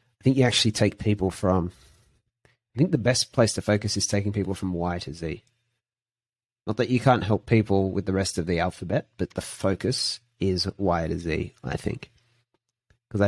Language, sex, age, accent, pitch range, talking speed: English, male, 30-49, Australian, 90-120 Hz, 195 wpm